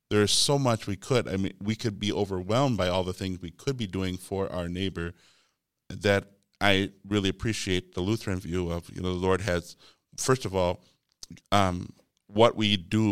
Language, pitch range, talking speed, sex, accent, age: English, 85-100 Hz, 195 wpm, male, American, 50-69